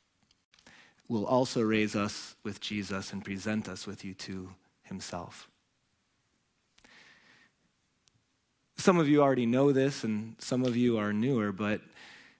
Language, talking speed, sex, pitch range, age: English, 125 wpm, male, 120-160 Hz, 30-49